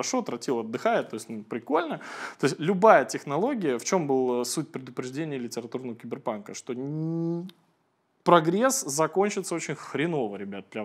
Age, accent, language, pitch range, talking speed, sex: 20-39, native, Russian, 130-190 Hz, 140 wpm, male